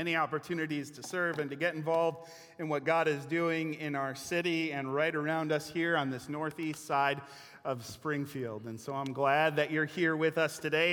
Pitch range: 135-165 Hz